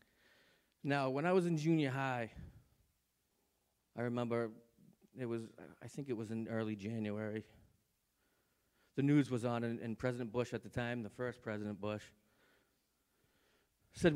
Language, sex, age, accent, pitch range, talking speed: English, male, 40-59, American, 110-130 Hz, 145 wpm